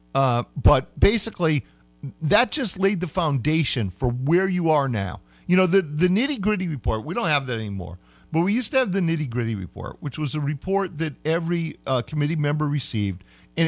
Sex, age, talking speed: male, 50-69, 190 wpm